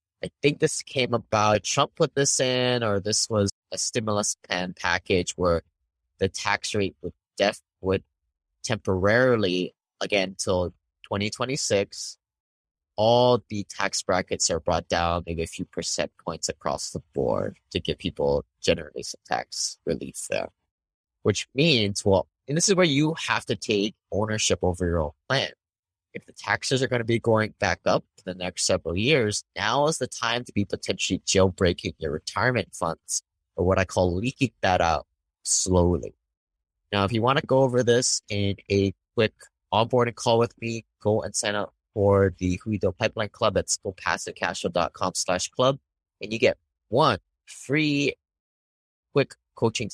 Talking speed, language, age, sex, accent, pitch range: 160 wpm, English, 30-49, male, American, 85-115 Hz